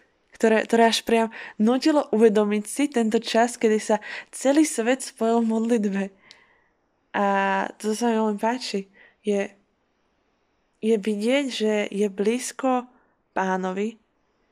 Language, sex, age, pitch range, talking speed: Slovak, female, 20-39, 205-245 Hz, 125 wpm